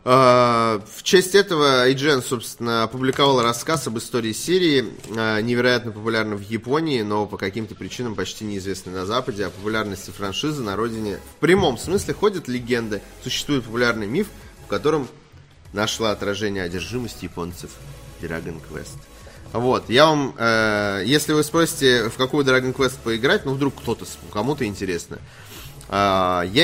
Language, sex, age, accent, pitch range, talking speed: Russian, male, 20-39, native, 100-130 Hz, 135 wpm